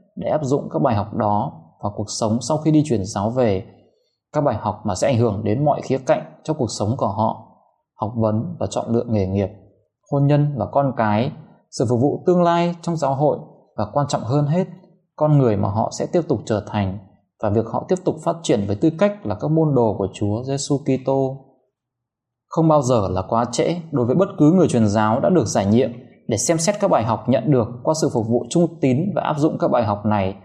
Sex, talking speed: male, 240 wpm